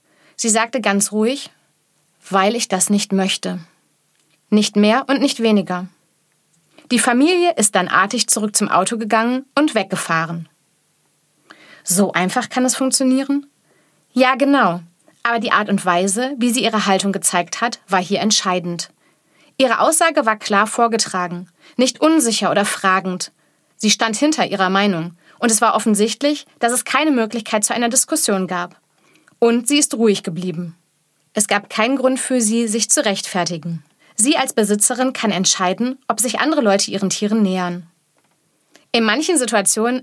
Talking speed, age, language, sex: 150 wpm, 30-49, German, female